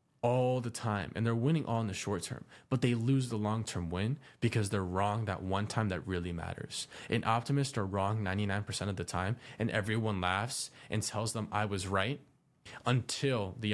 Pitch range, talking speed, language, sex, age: 95-115 Hz, 210 wpm, English, male, 20-39